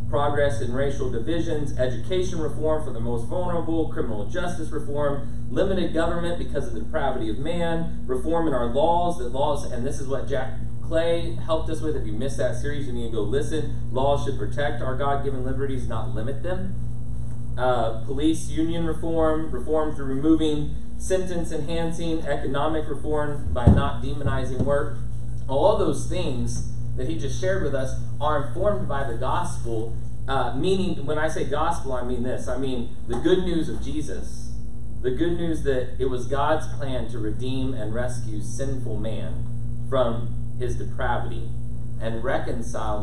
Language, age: English, 30-49